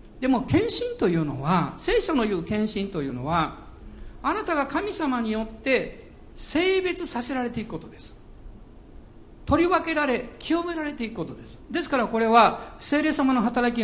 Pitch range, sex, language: 205-300 Hz, male, Japanese